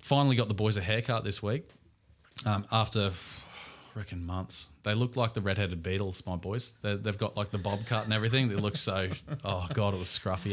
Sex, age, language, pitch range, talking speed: male, 20-39, English, 100-125 Hz, 220 wpm